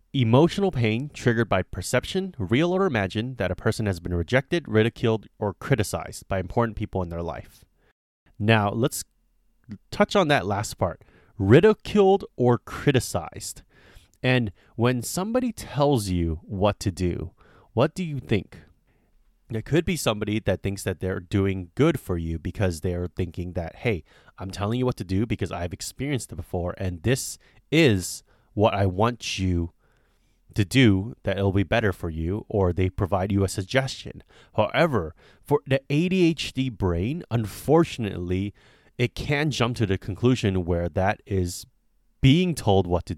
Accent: American